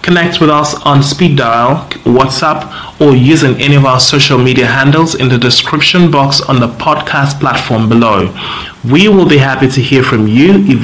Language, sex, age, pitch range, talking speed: English, male, 30-49, 125-155 Hz, 185 wpm